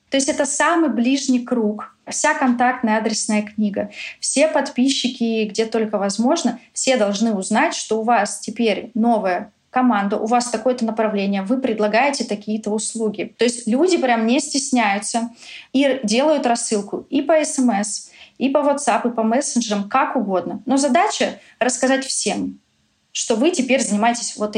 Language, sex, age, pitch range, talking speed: Russian, female, 20-39, 210-255 Hz, 155 wpm